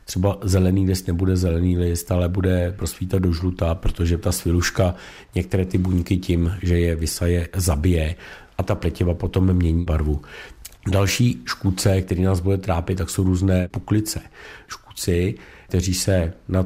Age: 50-69